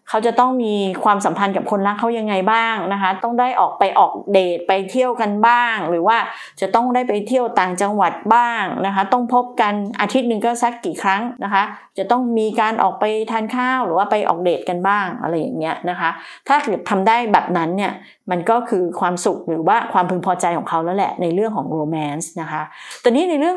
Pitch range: 185-240 Hz